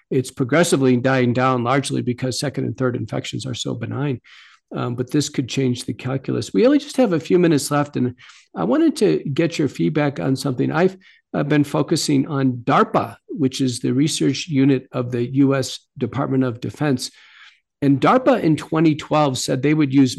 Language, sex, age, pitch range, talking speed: English, male, 50-69, 130-150 Hz, 185 wpm